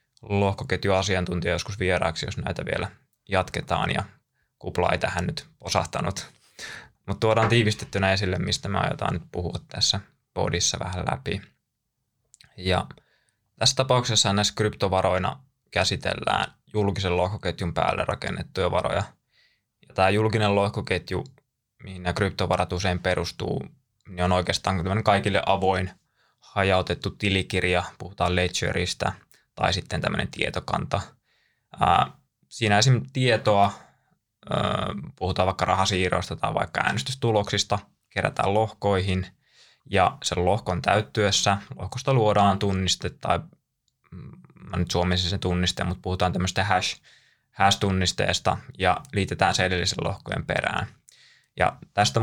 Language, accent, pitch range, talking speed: Finnish, native, 90-105 Hz, 110 wpm